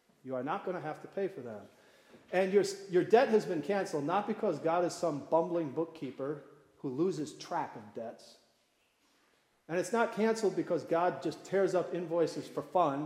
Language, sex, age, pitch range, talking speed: English, male, 40-59, 145-185 Hz, 190 wpm